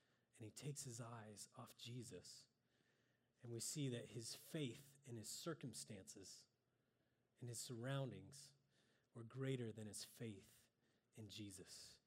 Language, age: English, 30-49